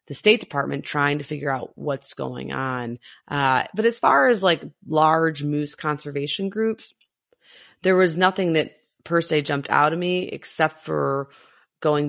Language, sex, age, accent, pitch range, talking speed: English, female, 30-49, American, 140-170 Hz, 165 wpm